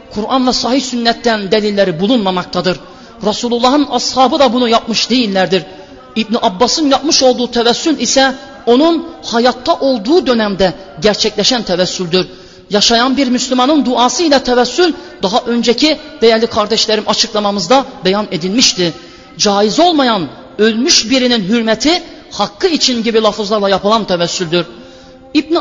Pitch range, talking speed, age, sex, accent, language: 215-270 Hz, 110 wpm, 40-59, male, native, Turkish